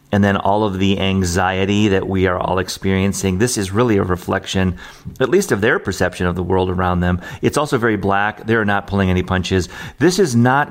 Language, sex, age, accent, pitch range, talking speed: English, male, 40-59, American, 95-115 Hz, 215 wpm